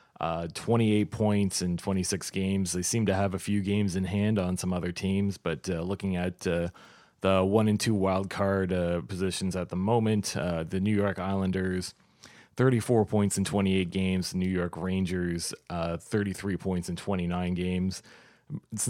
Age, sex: 30-49, male